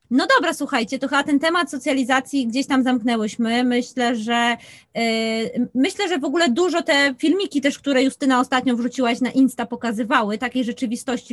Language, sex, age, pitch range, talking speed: Polish, female, 20-39, 235-280 Hz, 165 wpm